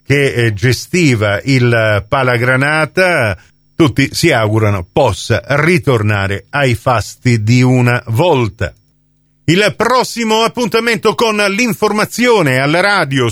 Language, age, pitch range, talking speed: Italian, 50-69, 125-185 Hz, 95 wpm